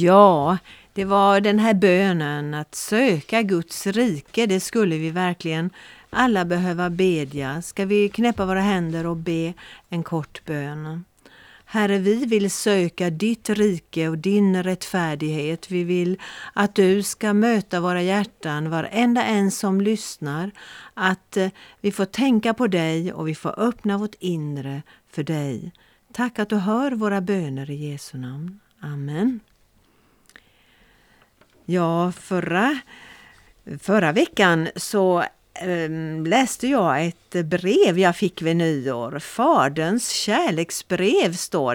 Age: 50-69